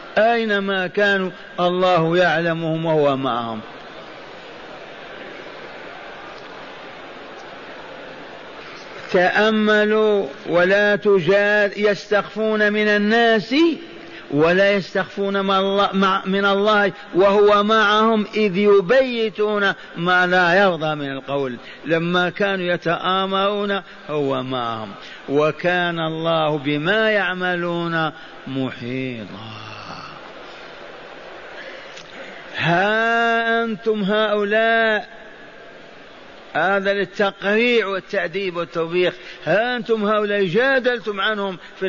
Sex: male